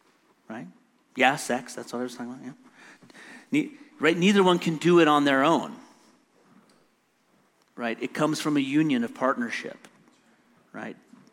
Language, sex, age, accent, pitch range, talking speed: English, male, 40-59, American, 130-175 Hz, 150 wpm